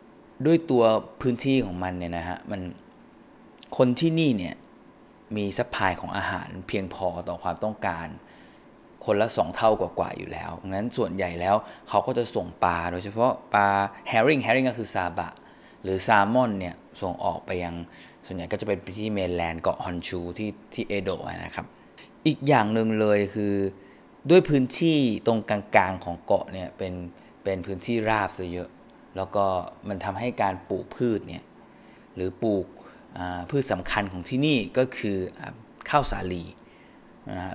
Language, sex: Thai, male